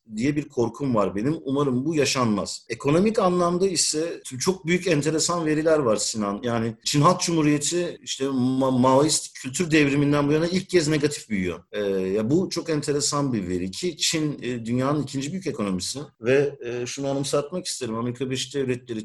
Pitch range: 125-160 Hz